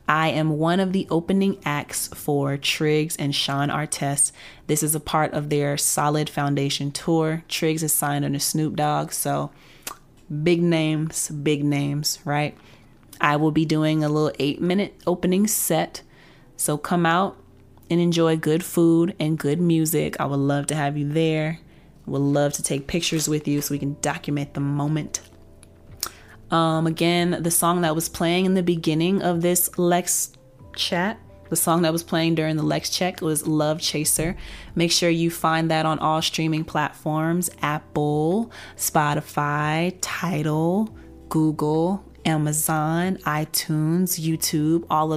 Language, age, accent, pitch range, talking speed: English, 30-49, American, 150-170 Hz, 155 wpm